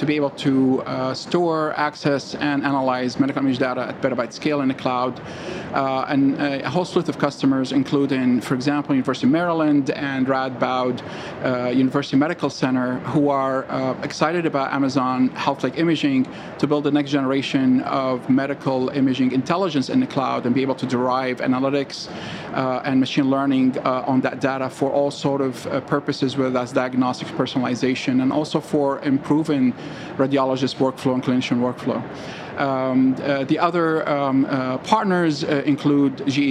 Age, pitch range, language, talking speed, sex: 40-59, 130-150 Hz, English, 165 wpm, male